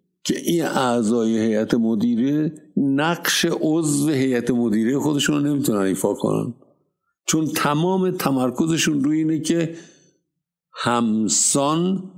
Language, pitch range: Persian, 105-155 Hz